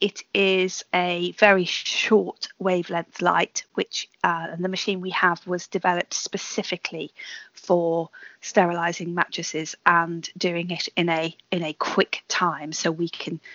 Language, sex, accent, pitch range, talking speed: English, female, British, 165-200 Hz, 140 wpm